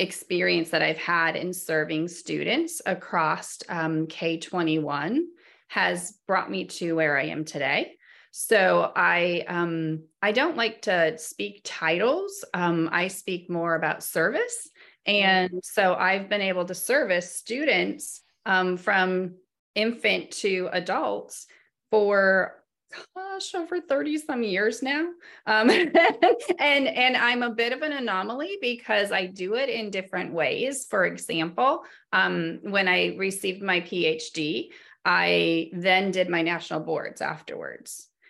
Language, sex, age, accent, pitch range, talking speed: English, female, 30-49, American, 165-200 Hz, 130 wpm